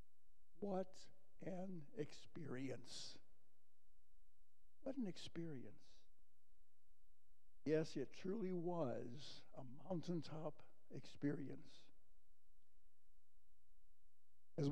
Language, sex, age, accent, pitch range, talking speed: English, male, 60-79, American, 125-160 Hz, 55 wpm